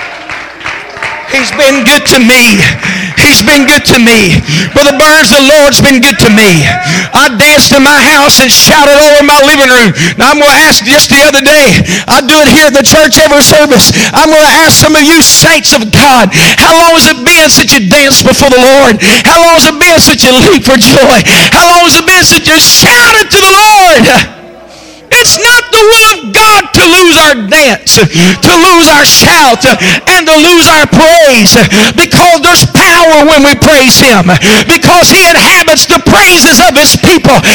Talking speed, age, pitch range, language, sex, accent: 195 wpm, 50-69, 255-335 Hz, English, male, American